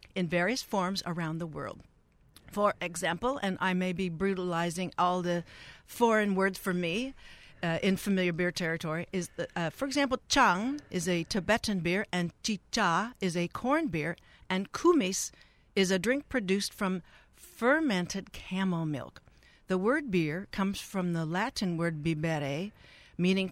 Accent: American